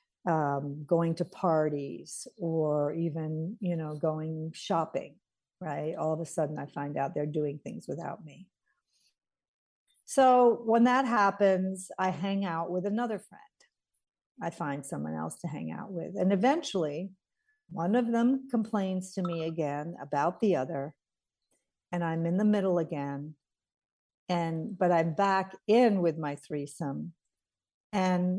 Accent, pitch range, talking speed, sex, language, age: American, 155-200 Hz, 145 wpm, female, English, 50-69